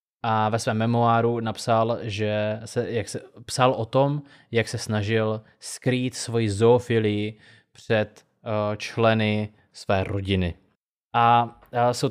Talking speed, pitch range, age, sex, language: 130 wpm, 105-120 Hz, 20-39, male, Czech